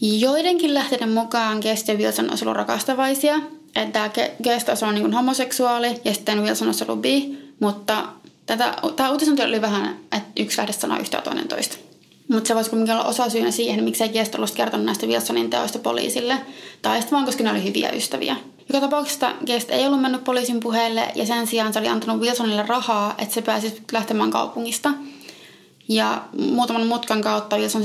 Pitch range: 210-255 Hz